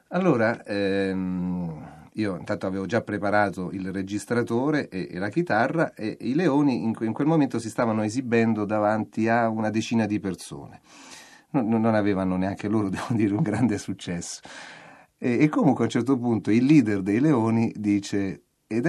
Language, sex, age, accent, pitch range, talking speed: Italian, male, 40-59, native, 100-130 Hz, 165 wpm